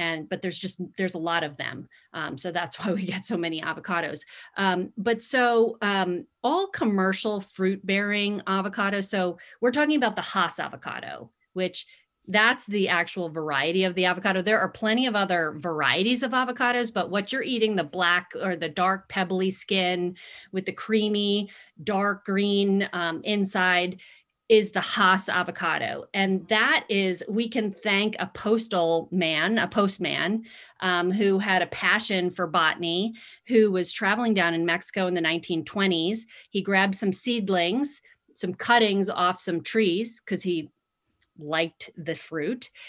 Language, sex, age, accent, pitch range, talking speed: English, female, 40-59, American, 175-210 Hz, 160 wpm